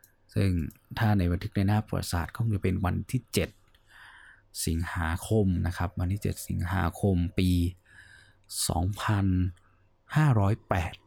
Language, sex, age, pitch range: Thai, male, 20-39, 90-110 Hz